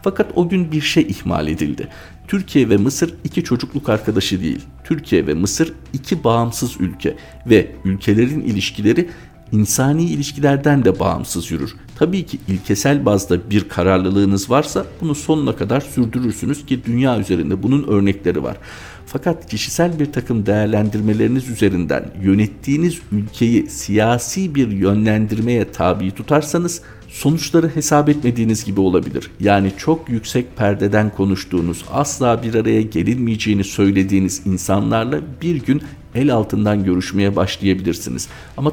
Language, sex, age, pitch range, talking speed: Turkish, male, 50-69, 100-140 Hz, 125 wpm